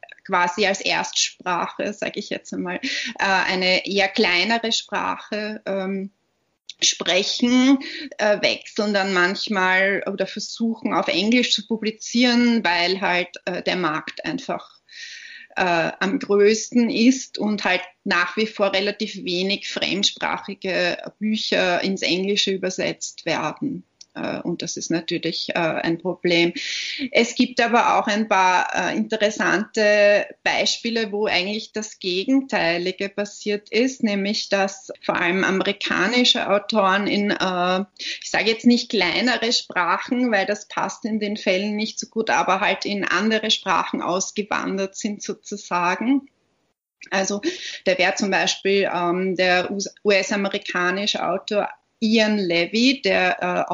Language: German